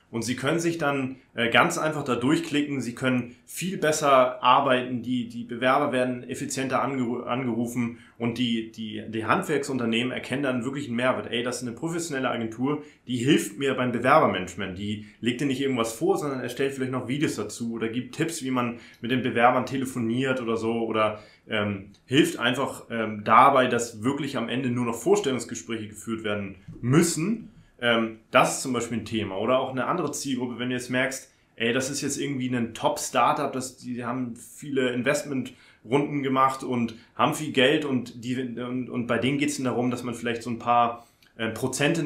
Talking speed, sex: 185 wpm, male